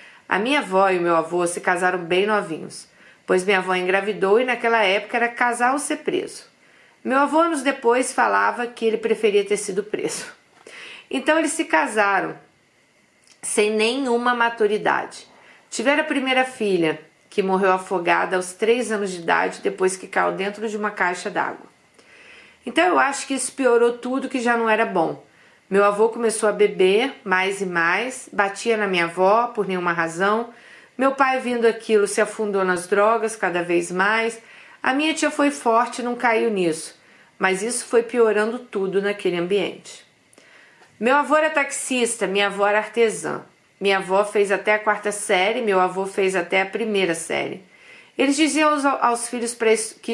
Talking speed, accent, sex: 170 wpm, Brazilian, female